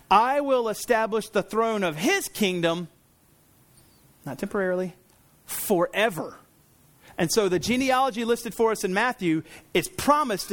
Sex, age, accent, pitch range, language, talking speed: male, 40-59, American, 185-250 Hz, English, 125 wpm